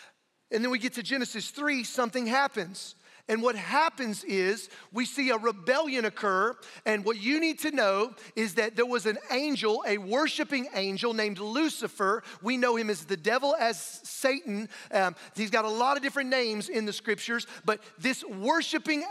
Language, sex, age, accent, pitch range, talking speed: English, male, 40-59, American, 215-275 Hz, 180 wpm